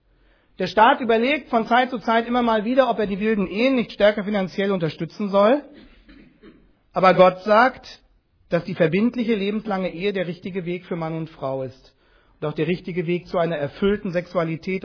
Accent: German